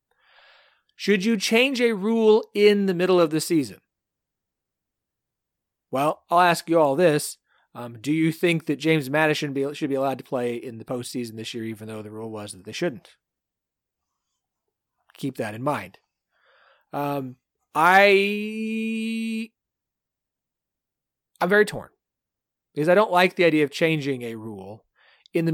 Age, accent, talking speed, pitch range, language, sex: 30-49, American, 145 wpm, 135-180 Hz, English, male